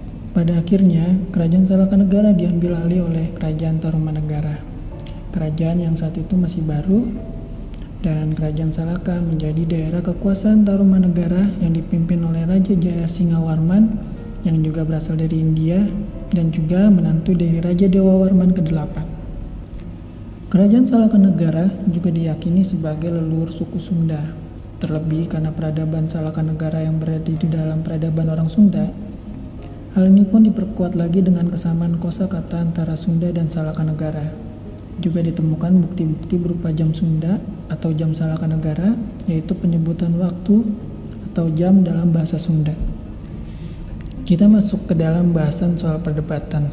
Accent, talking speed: native, 125 wpm